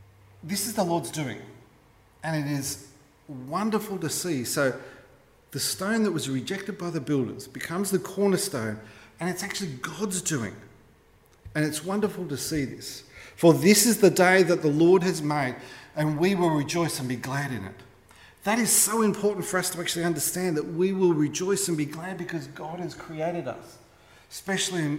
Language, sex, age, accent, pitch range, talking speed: English, male, 40-59, Australian, 120-180 Hz, 180 wpm